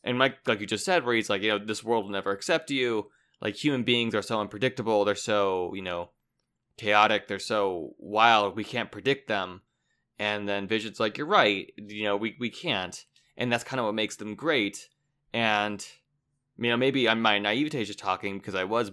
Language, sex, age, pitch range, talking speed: English, male, 20-39, 105-145 Hz, 210 wpm